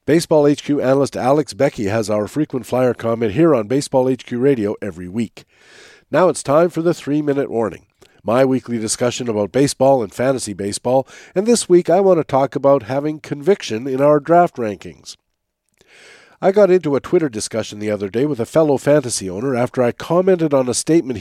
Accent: American